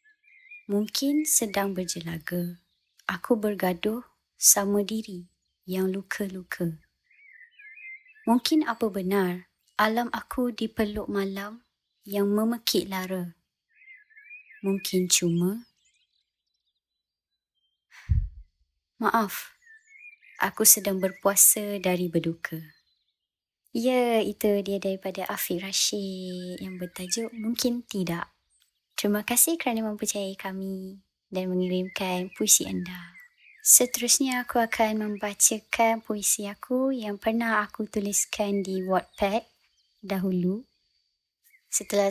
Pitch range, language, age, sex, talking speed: 185-235 Hz, Malay, 20-39, male, 85 wpm